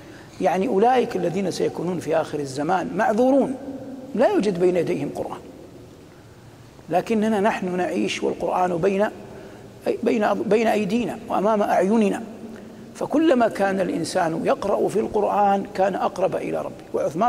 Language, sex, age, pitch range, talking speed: Arabic, male, 60-79, 175-230 Hz, 115 wpm